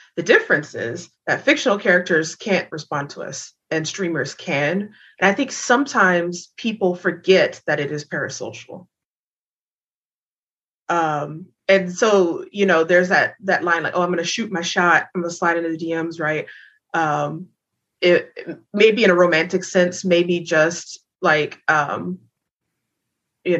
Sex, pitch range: female, 160-200 Hz